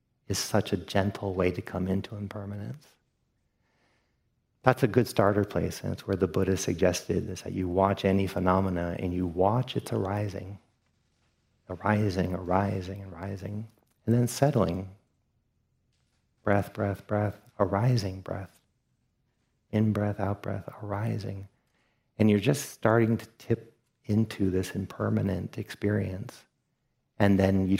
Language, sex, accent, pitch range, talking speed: English, male, American, 95-110 Hz, 130 wpm